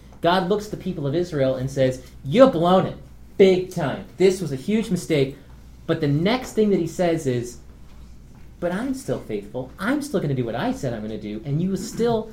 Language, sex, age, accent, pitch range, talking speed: English, male, 30-49, American, 135-185 Hz, 215 wpm